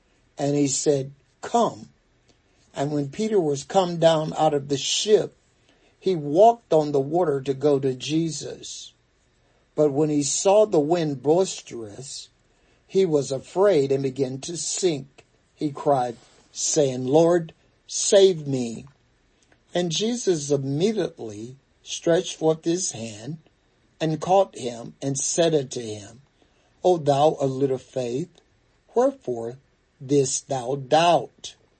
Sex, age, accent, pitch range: male, 60-79, American, 130-160 Hz